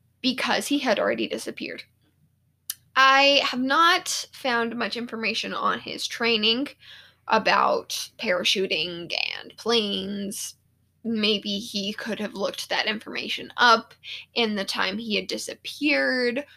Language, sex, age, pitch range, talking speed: English, female, 10-29, 195-265 Hz, 115 wpm